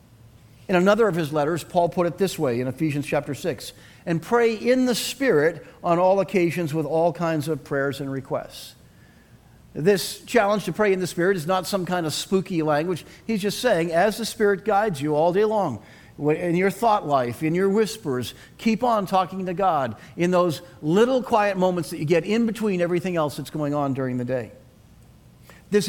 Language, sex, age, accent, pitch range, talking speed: English, male, 50-69, American, 155-215 Hz, 195 wpm